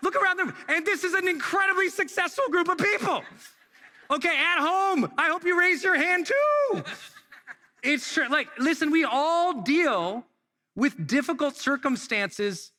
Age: 40-59